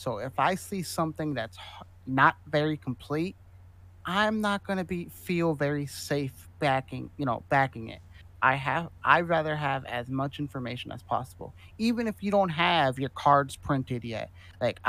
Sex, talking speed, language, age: male, 170 wpm, English, 30-49